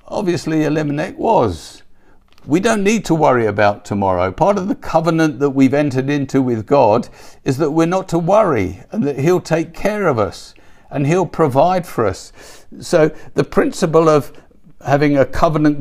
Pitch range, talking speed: 125-165 Hz, 170 wpm